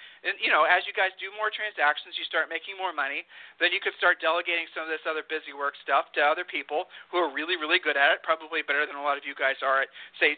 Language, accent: English, American